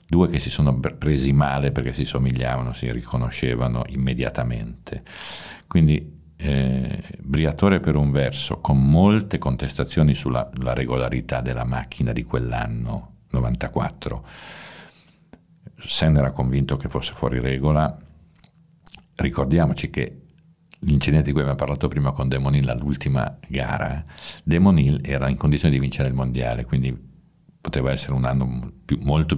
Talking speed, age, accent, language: 125 wpm, 50-69, native, Italian